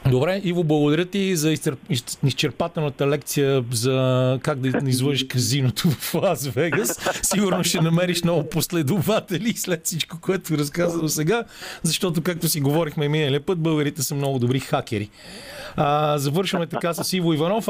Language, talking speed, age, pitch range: Bulgarian, 140 wpm, 40-59, 130-170 Hz